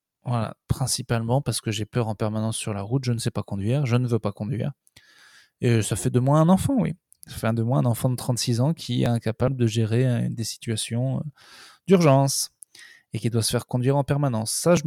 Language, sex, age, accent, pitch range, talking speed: French, male, 20-39, French, 120-160 Hz, 225 wpm